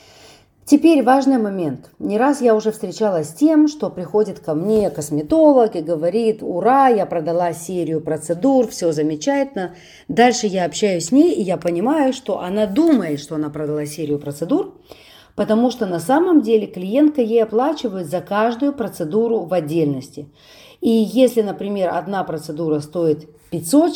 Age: 40-59